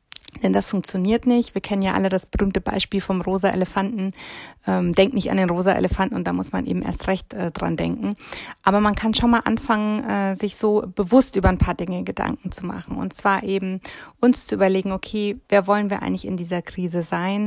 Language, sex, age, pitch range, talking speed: German, female, 30-49, 175-205 Hz, 205 wpm